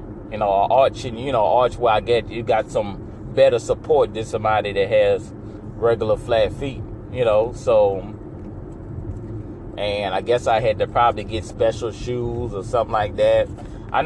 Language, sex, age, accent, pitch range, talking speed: English, male, 30-49, American, 105-120 Hz, 190 wpm